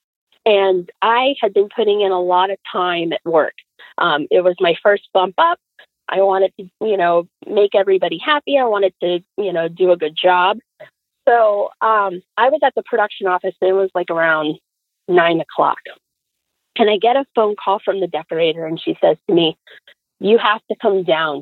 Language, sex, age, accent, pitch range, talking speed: English, female, 30-49, American, 180-220 Hz, 195 wpm